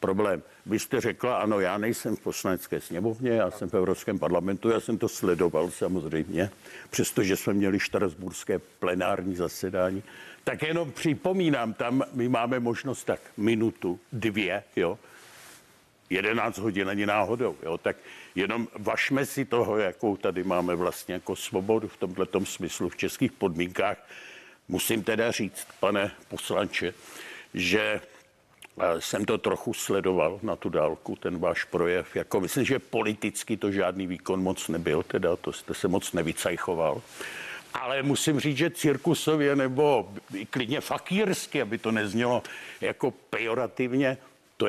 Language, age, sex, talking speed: Czech, 60-79, male, 140 wpm